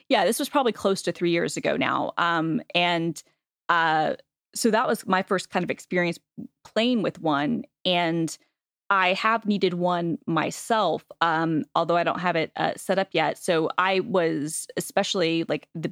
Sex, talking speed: female, 175 wpm